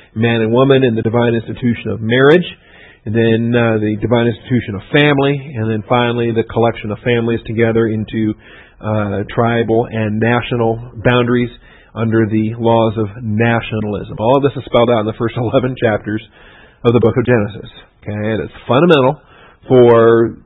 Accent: American